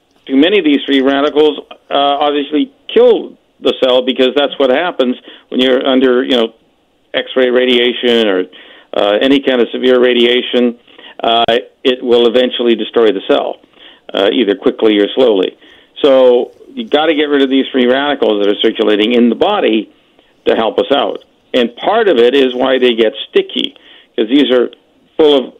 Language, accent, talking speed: English, American, 175 wpm